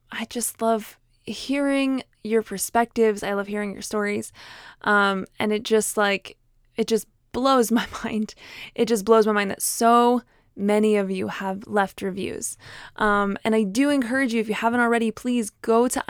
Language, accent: English, American